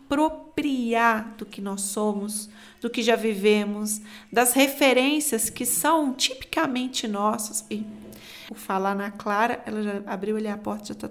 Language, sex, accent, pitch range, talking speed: Portuguese, female, Brazilian, 205-245 Hz, 150 wpm